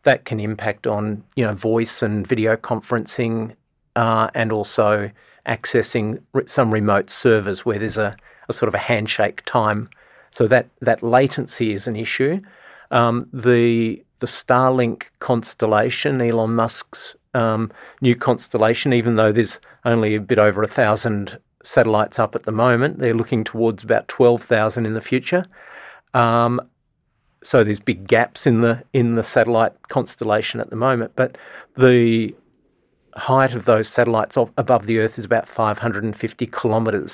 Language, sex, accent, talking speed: English, male, Australian, 145 wpm